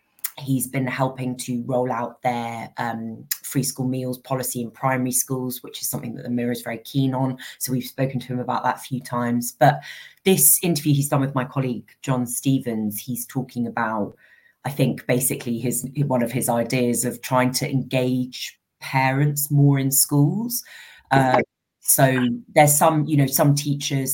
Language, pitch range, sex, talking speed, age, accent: English, 120-135 Hz, female, 180 wpm, 20-39, British